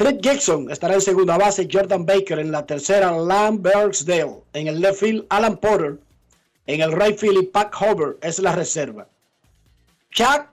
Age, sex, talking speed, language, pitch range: 50-69, male, 165 wpm, Spanish, 160-205 Hz